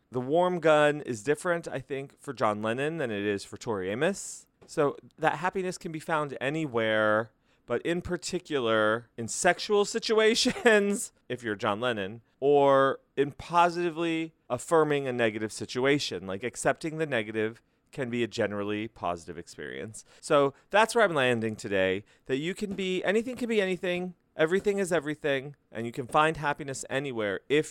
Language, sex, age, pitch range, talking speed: English, male, 30-49, 120-175 Hz, 160 wpm